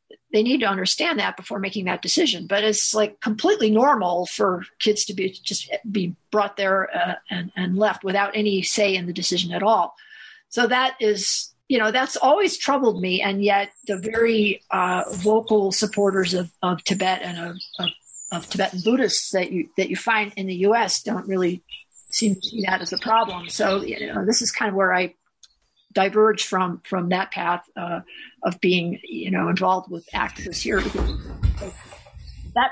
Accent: American